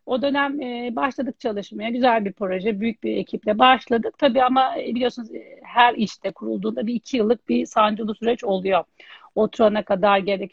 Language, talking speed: Turkish, 155 wpm